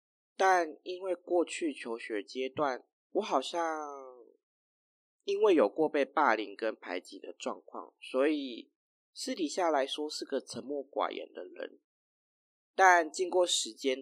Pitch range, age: 125-180 Hz, 20-39